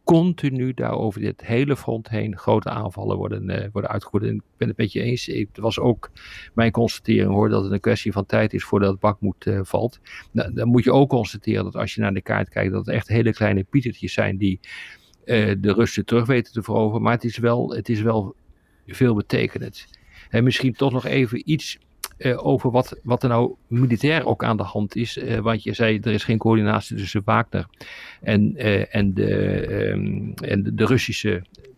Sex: male